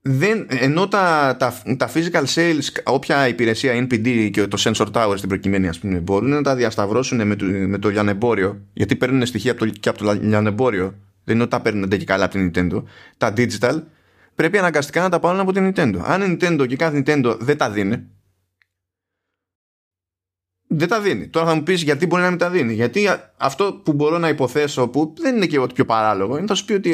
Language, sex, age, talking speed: Greek, male, 20-39, 190 wpm